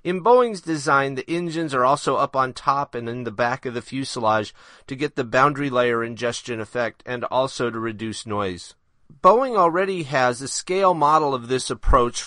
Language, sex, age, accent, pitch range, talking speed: English, male, 30-49, American, 120-155 Hz, 185 wpm